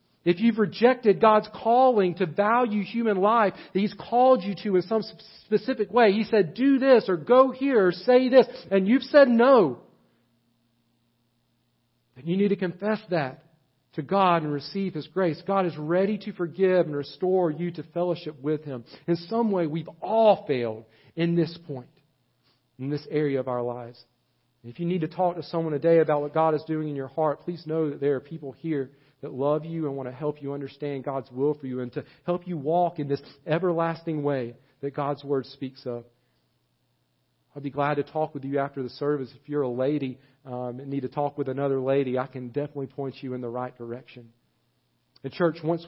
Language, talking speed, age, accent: English, 205 wpm, 40-59, American